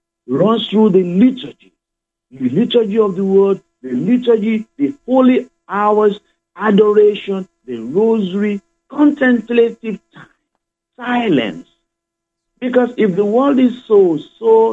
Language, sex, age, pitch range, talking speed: English, male, 50-69, 160-235 Hz, 110 wpm